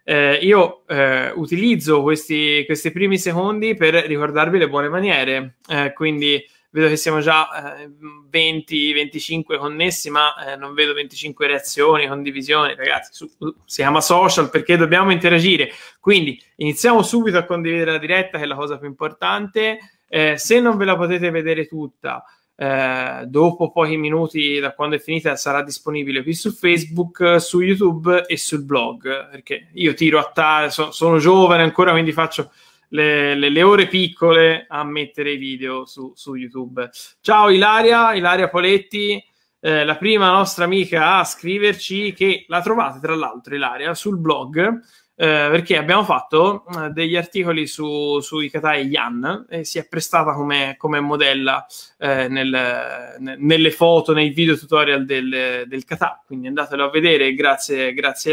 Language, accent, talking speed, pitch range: Italian, native, 155 wpm, 145-180 Hz